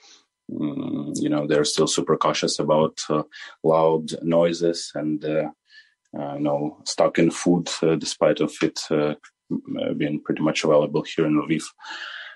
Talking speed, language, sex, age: 140 wpm, English, male, 30-49